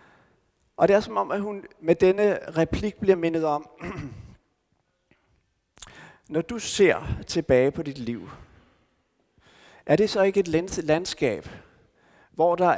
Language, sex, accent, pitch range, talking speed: Danish, male, native, 140-185 Hz, 130 wpm